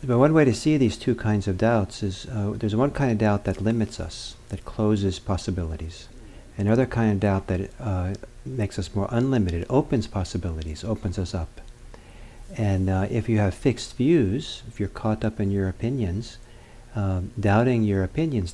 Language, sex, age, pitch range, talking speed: English, male, 50-69, 95-120 Hz, 180 wpm